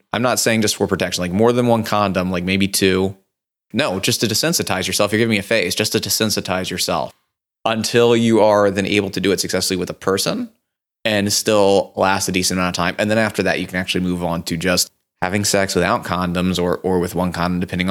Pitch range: 95-110 Hz